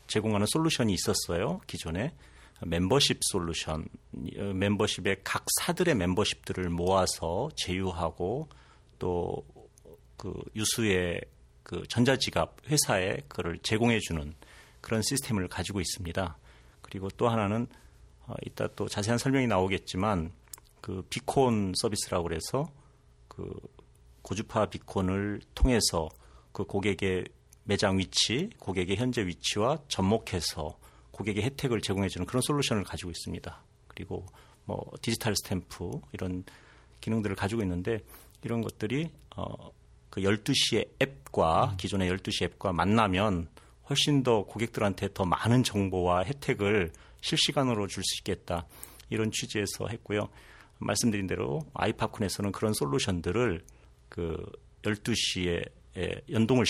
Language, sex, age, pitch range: Korean, male, 40-59, 90-115 Hz